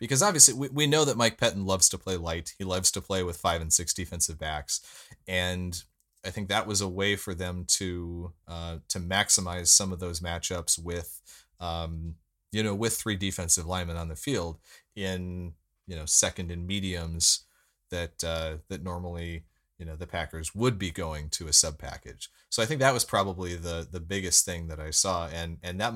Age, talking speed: 30-49, 200 wpm